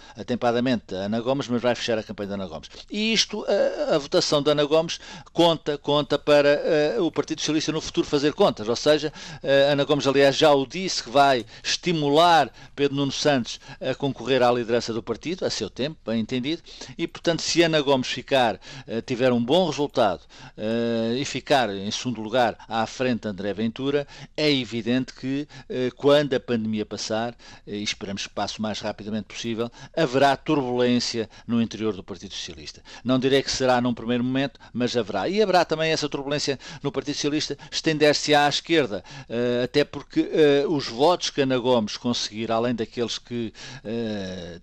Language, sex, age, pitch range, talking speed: Portuguese, male, 50-69, 115-145 Hz, 185 wpm